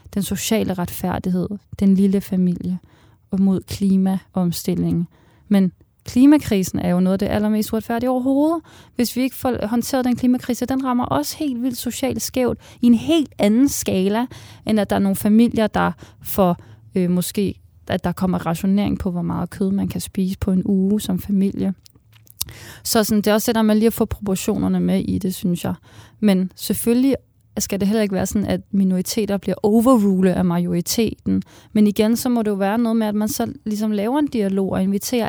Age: 30-49